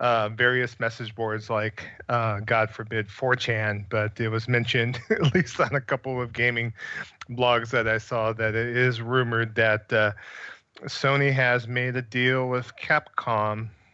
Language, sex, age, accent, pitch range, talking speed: English, male, 40-59, American, 110-125 Hz, 160 wpm